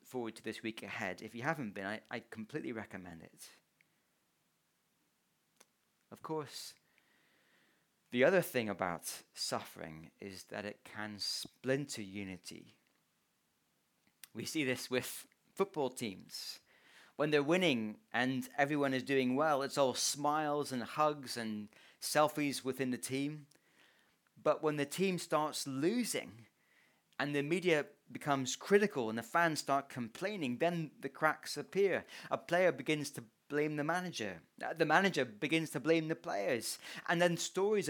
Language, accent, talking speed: English, British, 140 wpm